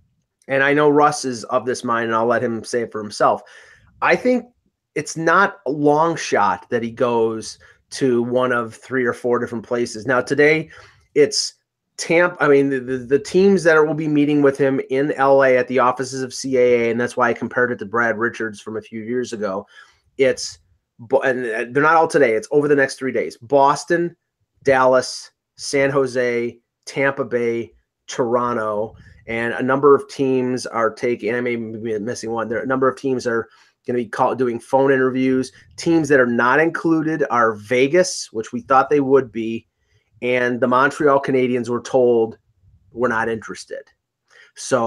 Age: 30-49